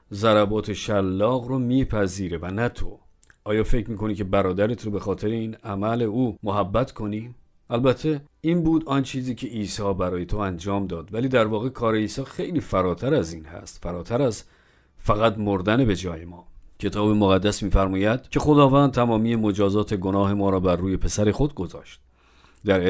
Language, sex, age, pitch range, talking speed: Persian, male, 50-69, 100-130 Hz, 170 wpm